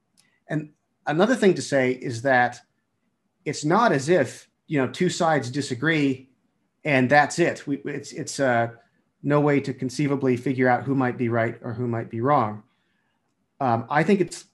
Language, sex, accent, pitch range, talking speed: English, male, American, 125-155 Hz, 175 wpm